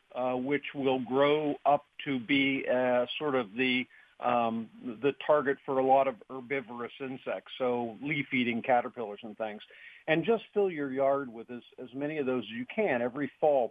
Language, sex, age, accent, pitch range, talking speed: English, male, 50-69, American, 115-135 Hz, 180 wpm